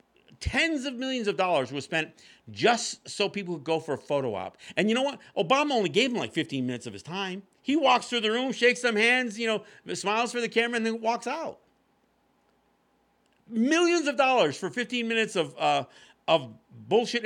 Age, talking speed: 50-69, 200 wpm